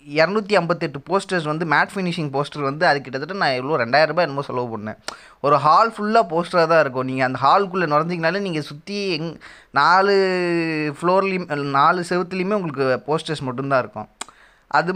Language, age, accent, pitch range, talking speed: Tamil, 20-39, native, 145-190 Hz, 155 wpm